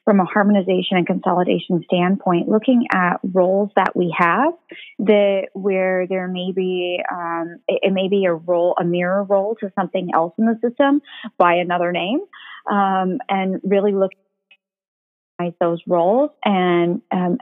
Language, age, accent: English, 30-49, American